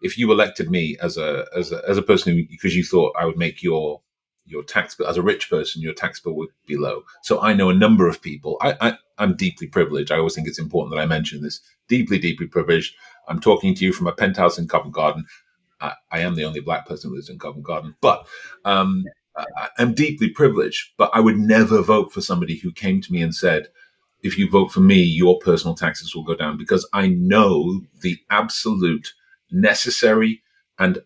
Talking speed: 220 wpm